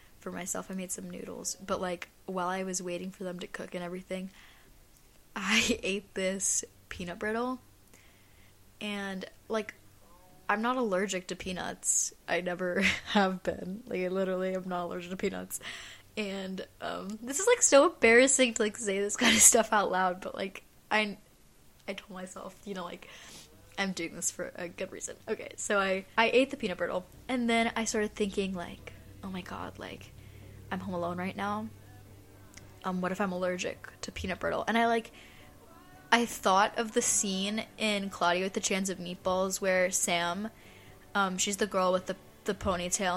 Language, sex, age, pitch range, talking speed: English, female, 10-29, 180-220 Hz, 180 wpm